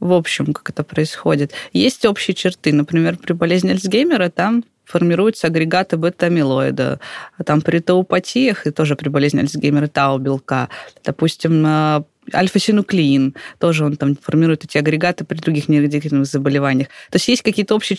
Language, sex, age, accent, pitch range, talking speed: Russian, female, 20-39, native, 150-180 Hz, 145 wpm